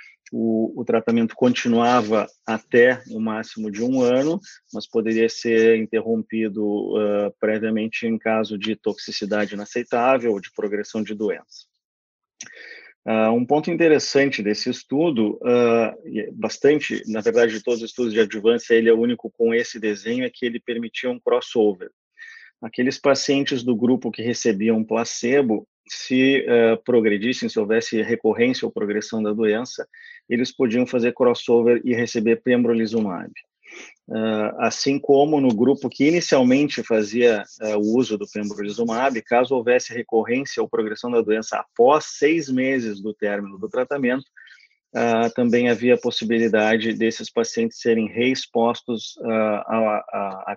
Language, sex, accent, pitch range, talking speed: Portuguese, male, Brazilian, 110-130 Hz, 130 wpm